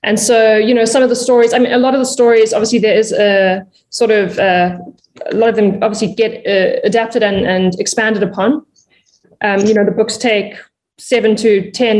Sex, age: female, 20-39